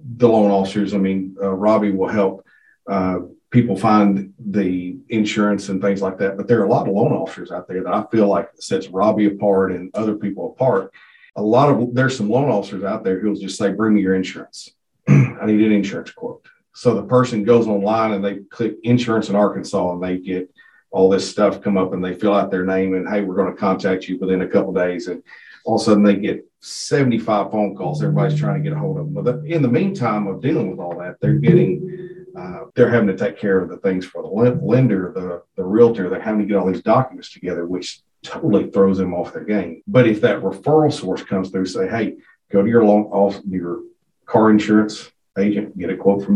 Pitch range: 95-120 Hz